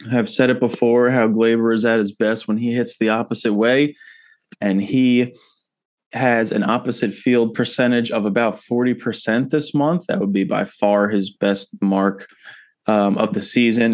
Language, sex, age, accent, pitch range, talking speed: English, male, 20-39, American, 105-120 Hz, 175 wpm